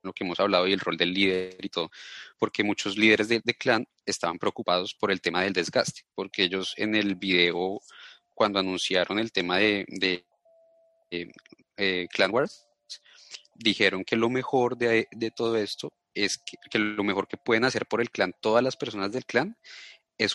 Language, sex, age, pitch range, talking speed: Spanish, male, 30-49, 95-115 Hz, 190 wpm